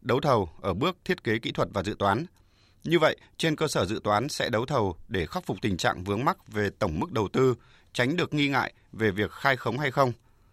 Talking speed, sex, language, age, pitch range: 245 wpm, male, Vietnamese, 20-39, 105-140 Hz